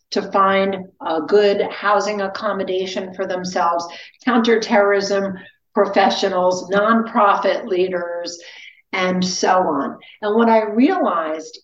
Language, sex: English, female